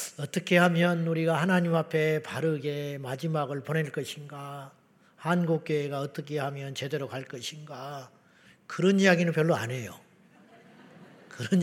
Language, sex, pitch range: Korean, male, 150-185 Hz